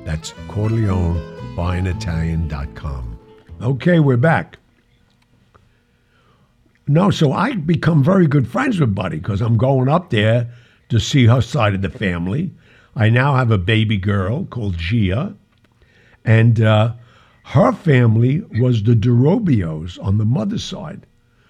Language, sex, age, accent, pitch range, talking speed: English, male, 60-79, American, 105-135 Hz, 135 wpm